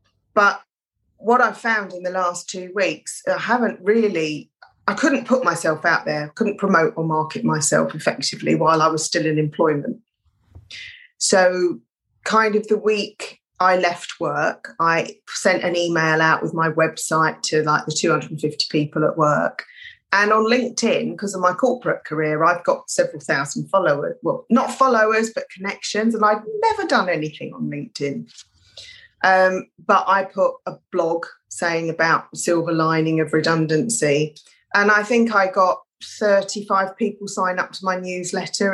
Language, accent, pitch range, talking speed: English, British, 170-225 Hz, 160 wpm